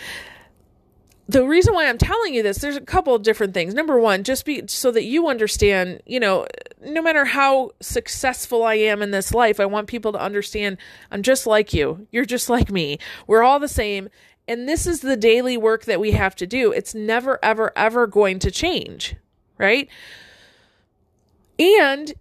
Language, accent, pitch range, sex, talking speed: English, American, 210-275 Hz, female, 185 wpm